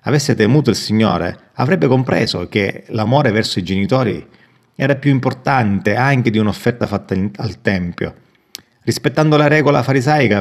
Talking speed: 140 wpm